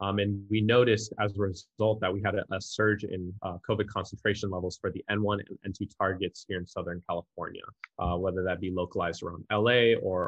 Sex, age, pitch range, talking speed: male, 20-39, 90-105 Hz, 210 wpm